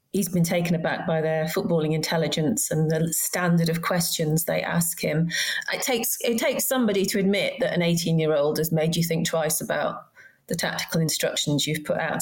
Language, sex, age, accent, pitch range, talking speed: English, female, 30-49, British, 165-200 Hz, 185 wpm